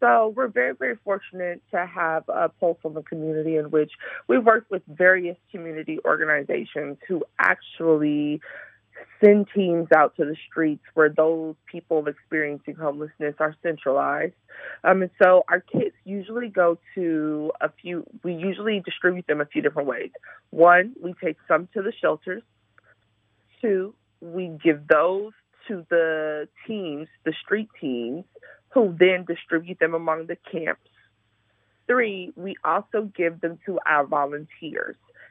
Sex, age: female, 30-49